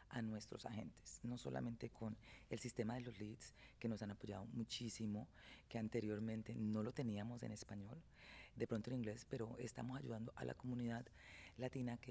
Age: 40-59